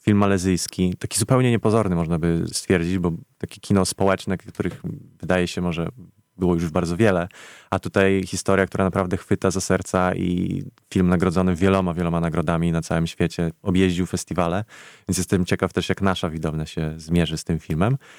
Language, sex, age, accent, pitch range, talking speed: Polish, male, 20-39, native, 85-100 Hz, 170 wpm